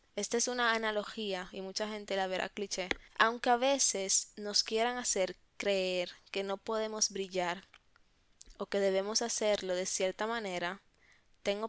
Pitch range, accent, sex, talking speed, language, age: 190-230 Hz, American, female, 150 wpm, Spanish, 10-29